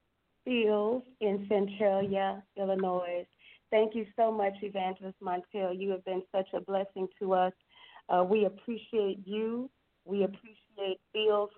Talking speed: 130 wpm